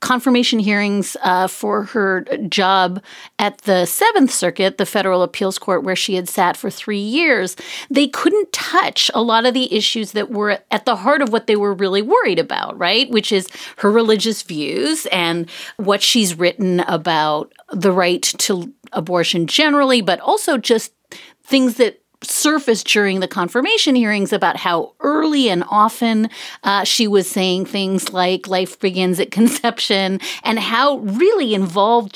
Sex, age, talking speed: female, 40-59, 160 wpm